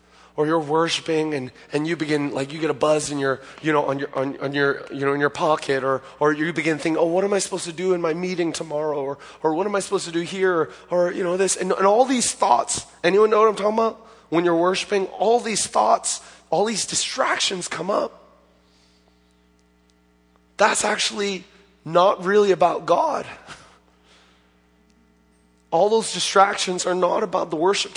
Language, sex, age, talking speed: English, male, 20-39, 170 wpm